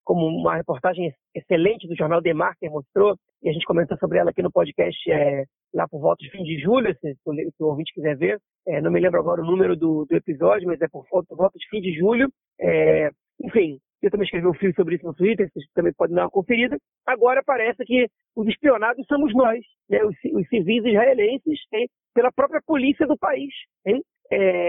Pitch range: 185-300 Hz